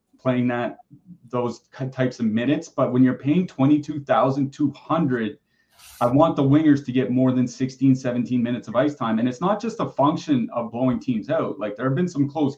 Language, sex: English, male